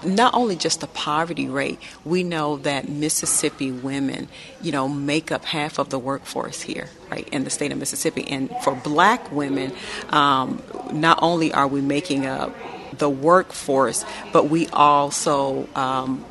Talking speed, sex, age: 160 wpm, female, 40-59